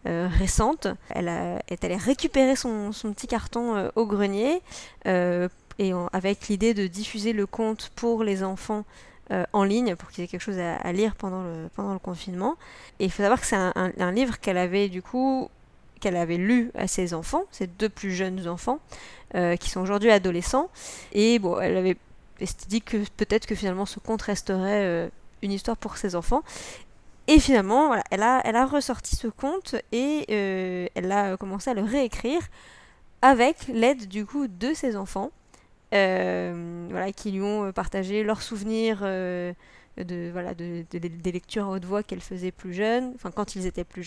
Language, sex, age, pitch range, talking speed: French, female, 20-39, 185-230 Hz, 195 wpm